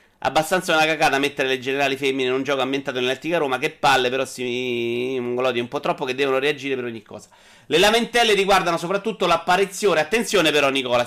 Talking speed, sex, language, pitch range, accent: 190 wpm, male, Italian, 130-185 Hz, native